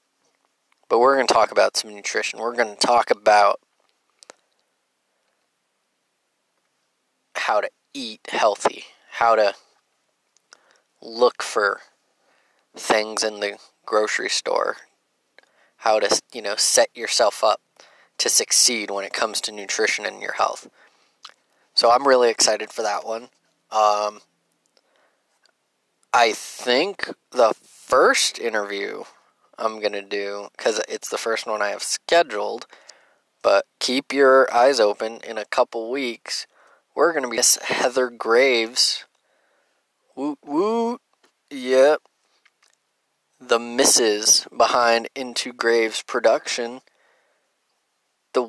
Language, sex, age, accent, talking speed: English, male, 20-39, American, 120 wpm